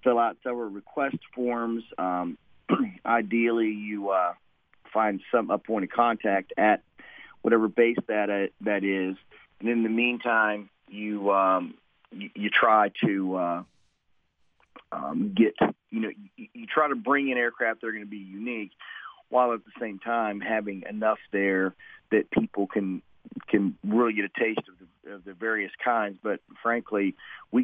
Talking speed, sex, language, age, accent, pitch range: 165 wpm, male, English, 40-59, American, 95-110 Hz